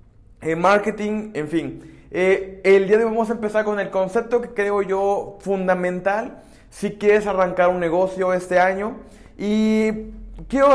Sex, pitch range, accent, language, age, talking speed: male, 160-205 Hz, Mexican, Spanish, 20-39, 155 wpm